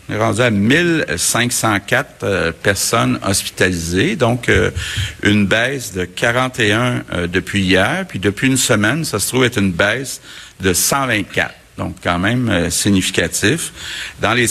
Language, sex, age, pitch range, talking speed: French, male, 60-79, 90-115 Hz, 150 wpm